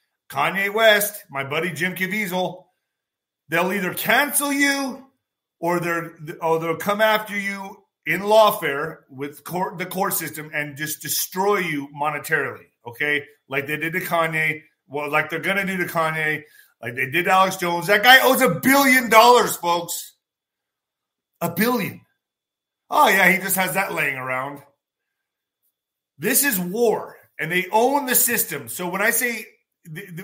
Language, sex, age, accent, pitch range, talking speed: English, male, 30-49, American, 155-205 Hz, 155 wpm